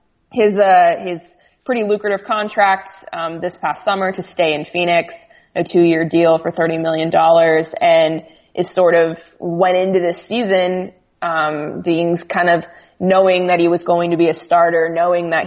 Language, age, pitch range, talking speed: English, 20-39, 165-185 Hz, 170 wpm